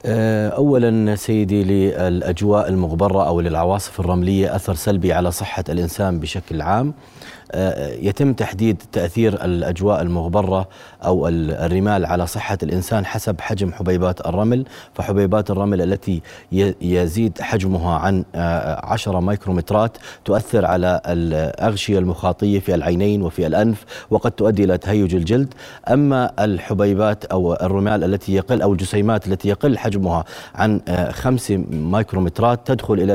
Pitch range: 95-115 Hz